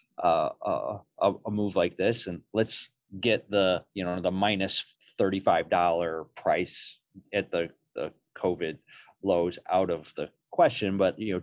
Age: 30-49